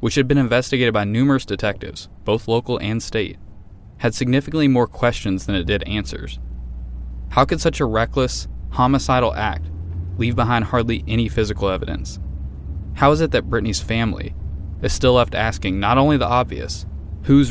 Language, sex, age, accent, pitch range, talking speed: English, male, 20-39, American, 80-115 Hz, 160 wpm